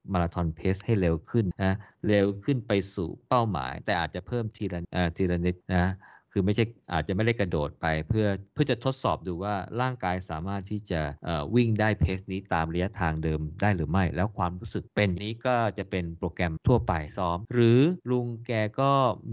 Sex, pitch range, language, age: male, 90-110 Hz, Thai, 20-39